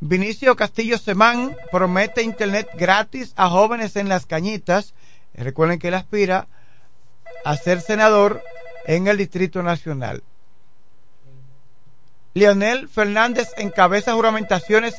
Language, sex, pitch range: Spanish, male, 165-205 Hz